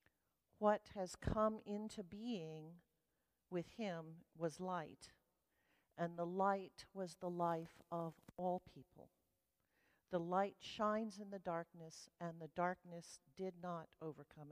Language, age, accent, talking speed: English, 50-69, American, 125 wpm